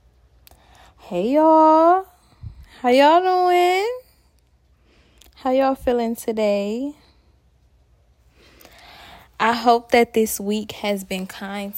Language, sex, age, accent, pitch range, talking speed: English, female, 10-29, American, 185-255 Hz, 85 wpm